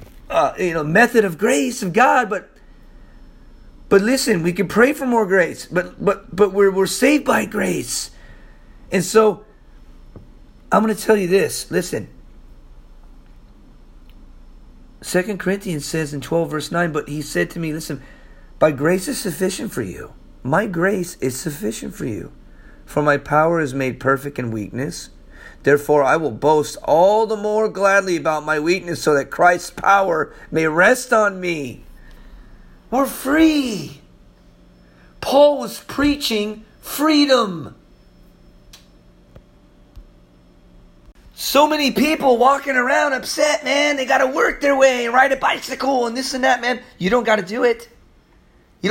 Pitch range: 150-240 Hz